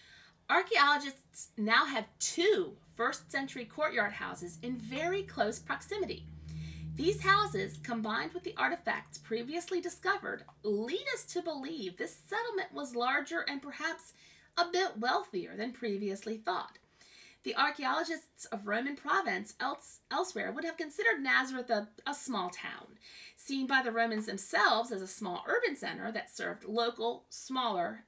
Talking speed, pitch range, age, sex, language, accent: 135 wpm, 205-325 Hz, 40-59, female, English, American